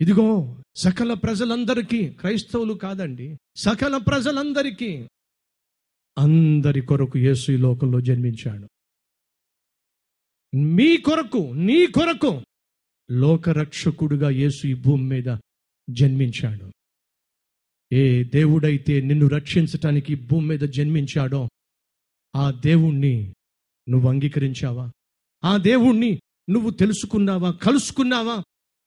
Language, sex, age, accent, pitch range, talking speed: Telugu, male, 50-69, native, 135-180 Hz, 80 wpm